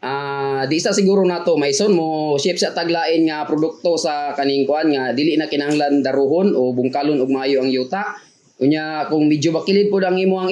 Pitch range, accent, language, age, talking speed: 140-170 Hz, native, Filipino, 20-39, 185 wpm